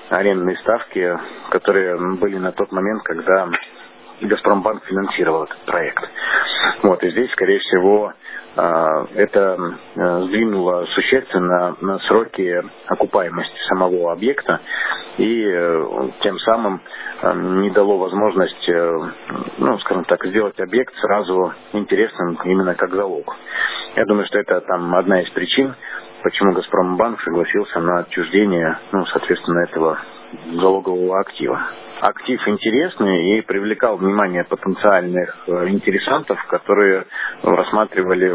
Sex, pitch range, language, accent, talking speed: male, 90-100 Hz, Russian, native, 105 wpm